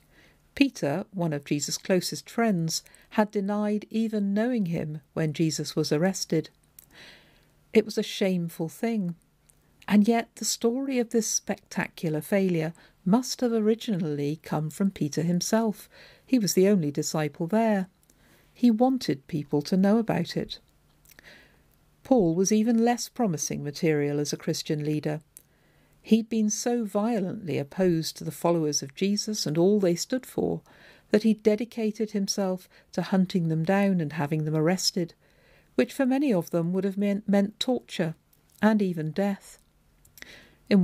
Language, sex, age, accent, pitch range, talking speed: English, female, 50-69, British, 160-215 Hz, 145 wpm